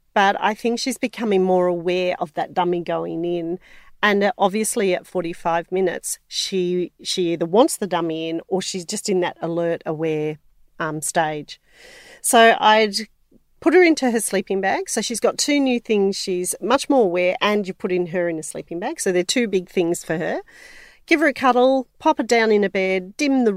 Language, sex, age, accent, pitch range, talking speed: English, female, 40-59, Australian, 180-230 Hz, 200 wpm